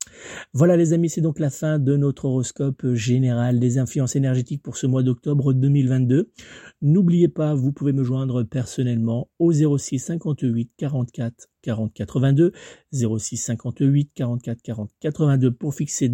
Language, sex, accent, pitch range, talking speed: French, male, French, 120-145 Hz, 145 wpm